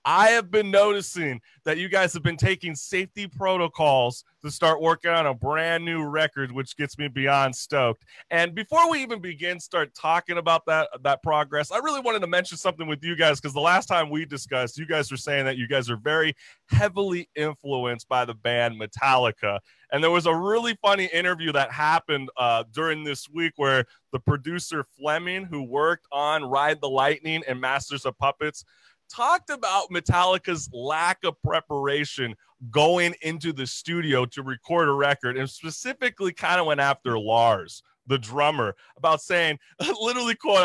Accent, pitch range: American, 140-185 Hz